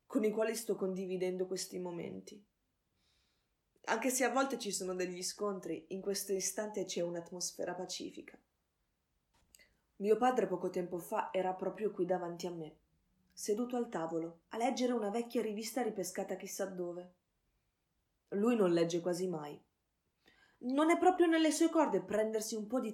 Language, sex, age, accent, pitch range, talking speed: Italian, female, 20-39, native, 180-215 Hz, 150 wpm